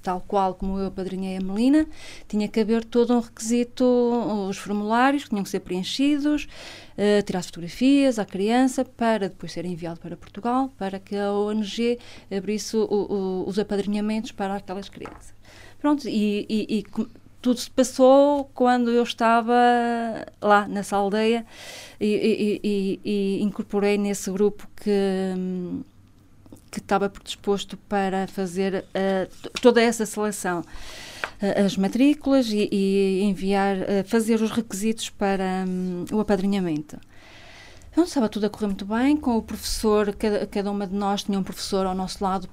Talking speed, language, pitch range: 155 wpm, Portuguese, 190-230 Hz